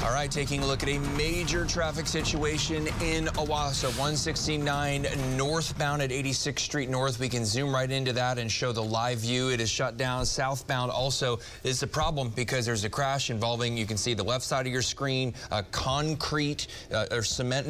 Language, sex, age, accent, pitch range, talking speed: English, male, 30-49, American, 110-135 Hz, 195 wpm